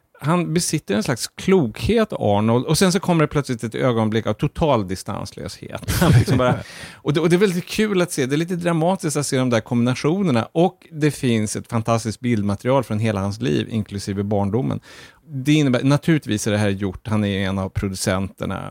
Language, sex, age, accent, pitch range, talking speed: Swedish, male, 30-49, Norwegian, 105-145 Hz, 195 wpm